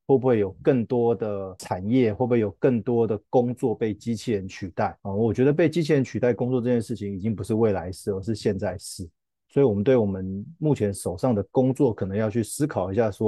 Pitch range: 105-130 Hz